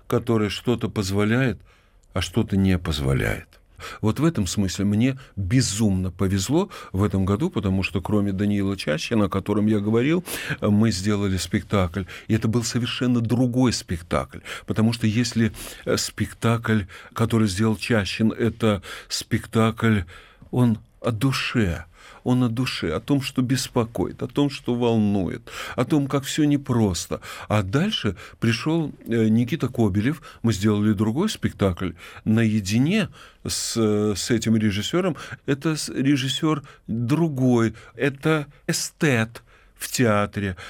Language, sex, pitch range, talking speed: Russian, male, 105-130 Hz, 125 wpm